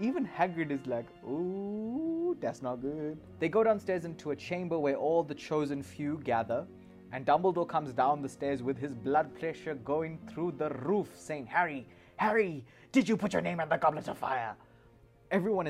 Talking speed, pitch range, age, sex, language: 185 wpm, 115-155 Hz, 20-39, male, English